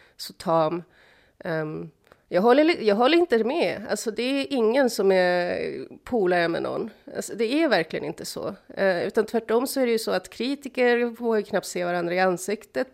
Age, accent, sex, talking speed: 30-49, native, female, 190 wpm